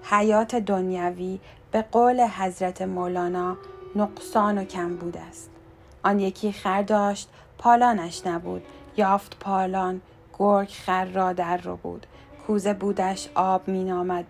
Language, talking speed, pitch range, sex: Persian, 125 wpm, 185-215 Hz, female